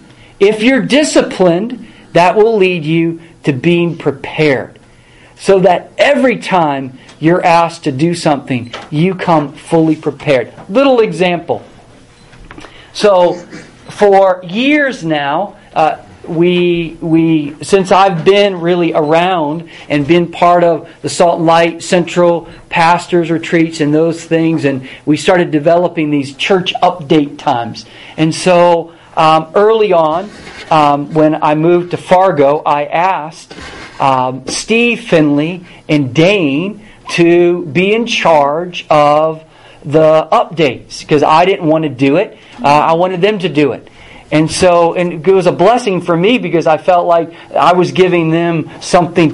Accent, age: American, 40-59